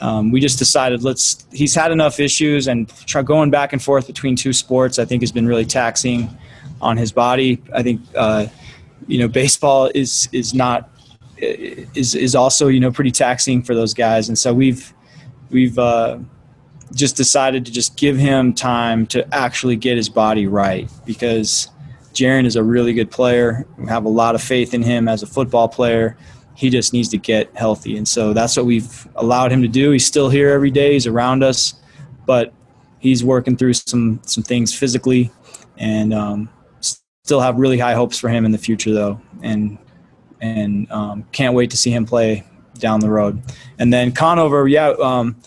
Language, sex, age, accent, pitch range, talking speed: English, male, 20-39, American, 115-135 Hz, 190 wpm